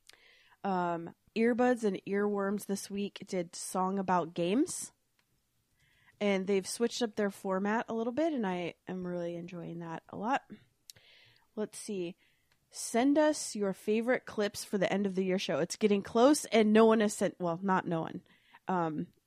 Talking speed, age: 170 wpm, 20-39